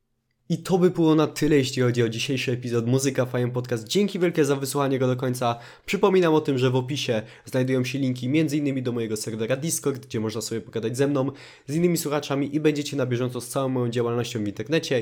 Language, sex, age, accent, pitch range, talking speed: Polish, male, 20-39, native, 115-140 Hz, 215 wpm